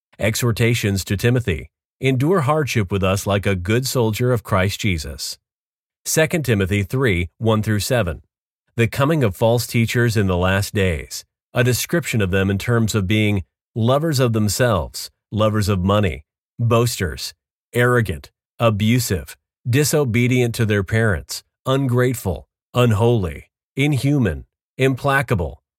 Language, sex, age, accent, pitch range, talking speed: English, male, 40-59, American, 100-125 Hz, 120 wpm